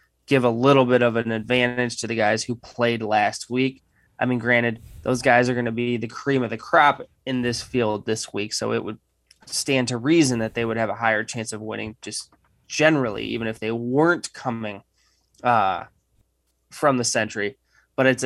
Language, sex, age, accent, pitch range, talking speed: English, male, 20-39, American, 110-130 Hz, 200 wpm